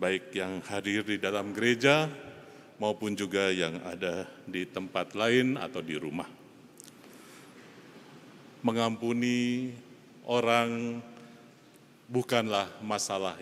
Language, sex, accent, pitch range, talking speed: Indonesian, male, native, 115-130 Hz, 90 wpm